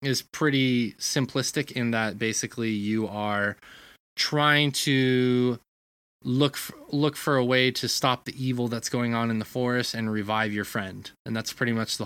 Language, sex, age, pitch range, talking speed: English, male, 20-39, 110-135 Hz, 175 wpm